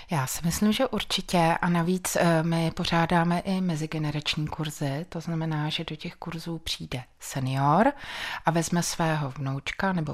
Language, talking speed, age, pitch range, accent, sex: Czech, 150 wpm, 20-39, 160-190 Hz, native, female